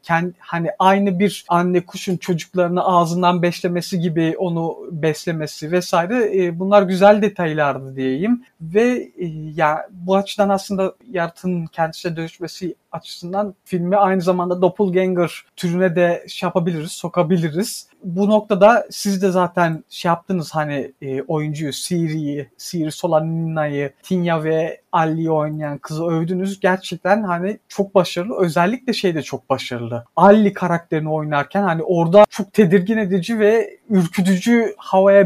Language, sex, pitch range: Turkish, male, 165-205 Hz